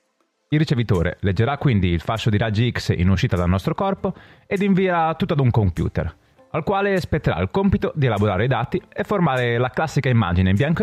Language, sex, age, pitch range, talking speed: Italian, male, 30-49, 105-160 Hz, 200 wpm